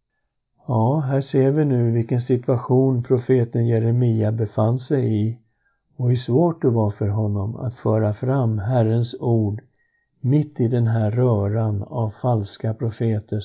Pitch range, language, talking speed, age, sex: 110-130 Hz, Swedish, 145 wpm, 50-69, male